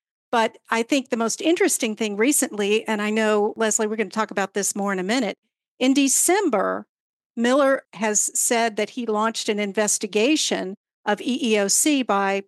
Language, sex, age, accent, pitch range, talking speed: English, female, 50-69, American, 195-235 Hz, 170 wpm